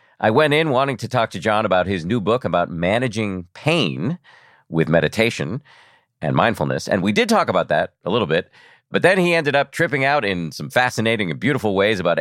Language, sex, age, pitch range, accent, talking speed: English, male, 40-59, 90-130 Hz, American, 205 wpm